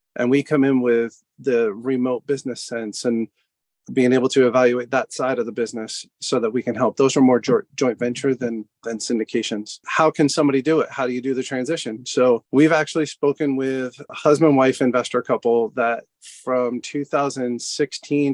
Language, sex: English, male